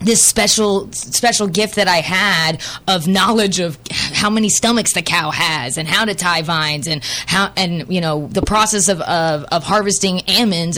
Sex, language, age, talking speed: female, English, 20-39, 185 wpm